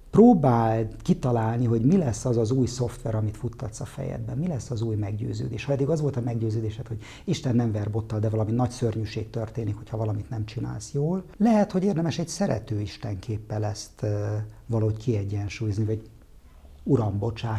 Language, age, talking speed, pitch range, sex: Hungarian, 50-69, 165 wpm, 110-130 Hz, male